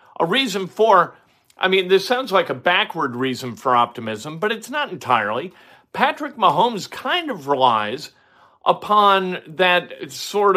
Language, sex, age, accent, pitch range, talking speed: English, male, 50-69, American, 165-210 Hz, 140 wpm